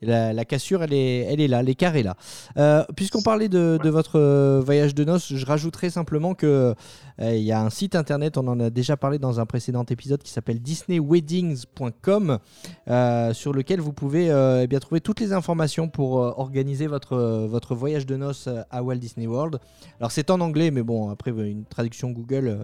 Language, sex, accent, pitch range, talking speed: French, male, French, 120-165 Hz, 210 wpm